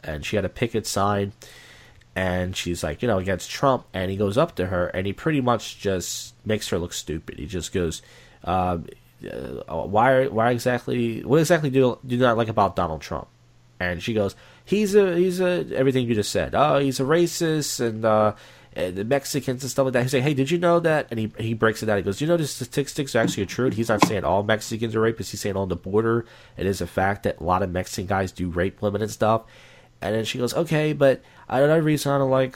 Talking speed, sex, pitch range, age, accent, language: 255 wpm, male, 95-125 Hz, 30-49, American, English